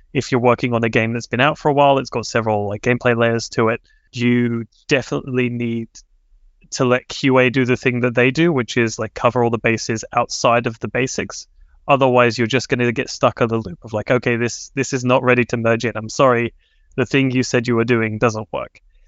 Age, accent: 20-39, British